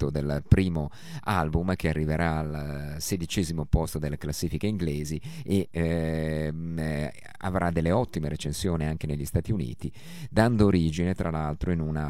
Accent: native